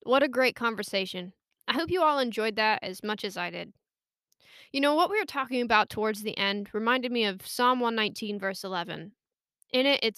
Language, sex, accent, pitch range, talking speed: English, female, American, 205-255 Hz, 205 wpm